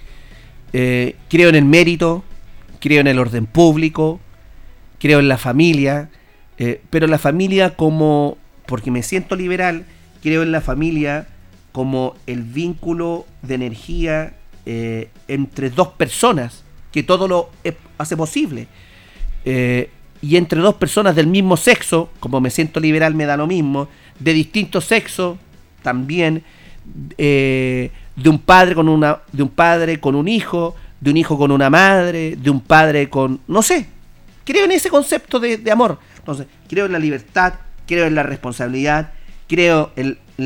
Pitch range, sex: 130-175 Hz, male